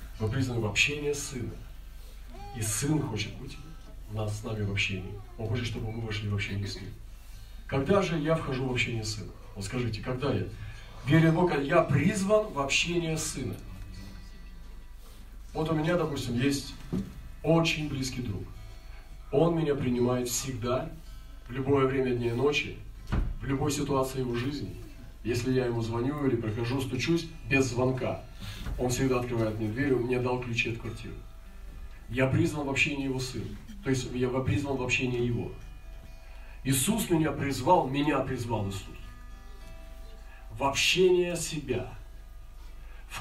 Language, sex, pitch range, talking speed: Russian, male, 105-145 Hz, 155 wpm